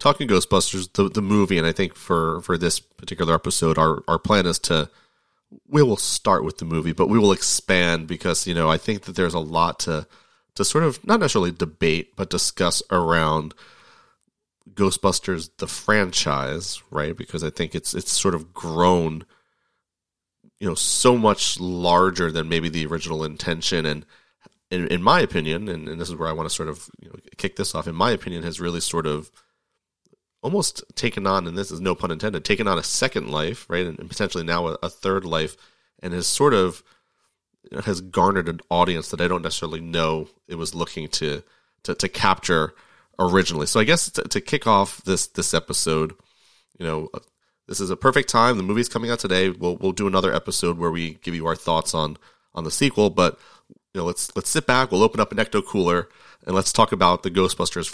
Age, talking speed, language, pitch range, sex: 30-49, 205 wpm, English, 80-95 Hz, male